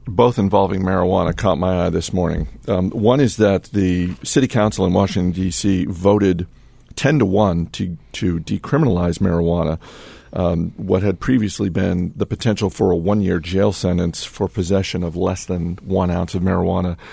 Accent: American